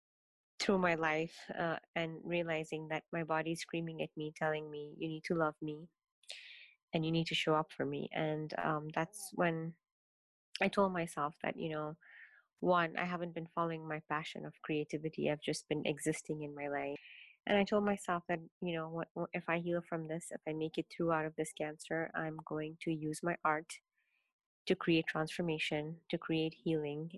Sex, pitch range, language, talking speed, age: female, 155-175 Hz, English, 190 wpm, 20-39